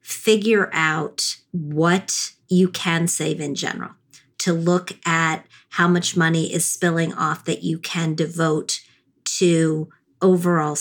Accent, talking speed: American, 130 wpm